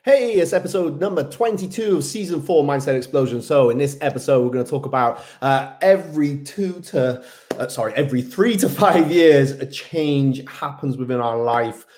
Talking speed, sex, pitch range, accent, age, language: 180 wpm, male, 120-160 Hz, British, 30-49, English